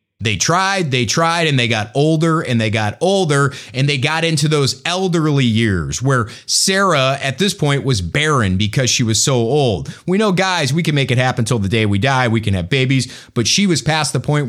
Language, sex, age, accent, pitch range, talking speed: English, male, 30-49, American, 135-220 Hz, 225 wpm